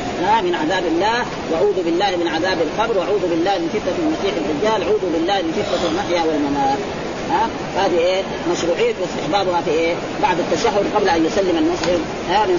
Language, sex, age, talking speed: Arabic, female, 30-49, 160 wpm